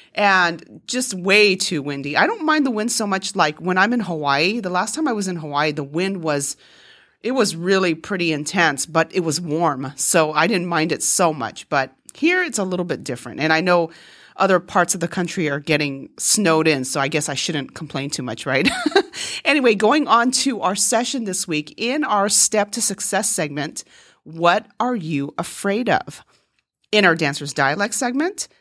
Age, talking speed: 40-59, 200 wpm